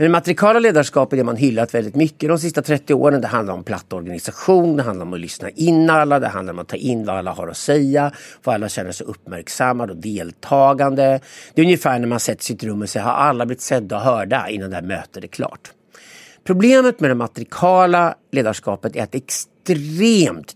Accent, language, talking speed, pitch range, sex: Swedish, English, 215 wpm, 115-155 Hz, male